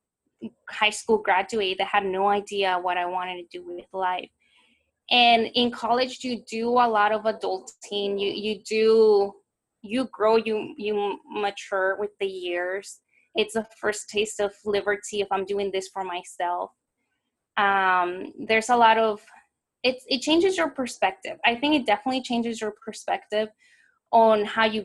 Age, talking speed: 10-29, 160 wpm